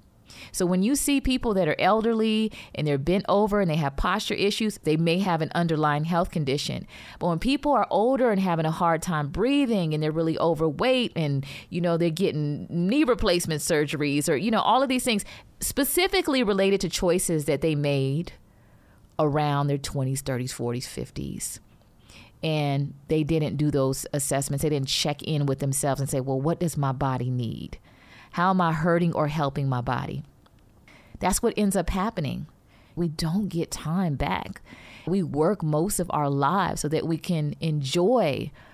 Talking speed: 180 wpm